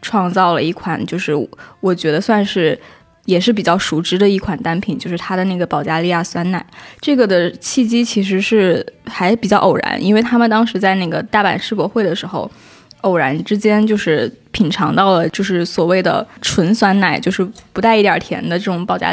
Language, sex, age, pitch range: Chinese, female, 20-39, 175-210 Hz